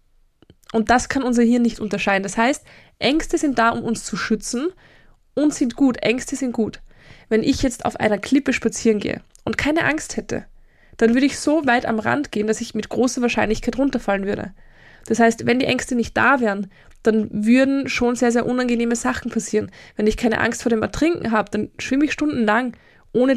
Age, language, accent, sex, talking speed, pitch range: 20-39, German, German, female, 200 wpm, 220-275 Hz